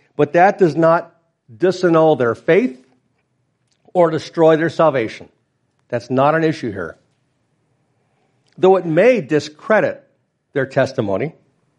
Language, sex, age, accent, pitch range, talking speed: English, male, 50-69, American, 135-175 Hz, 110 wpm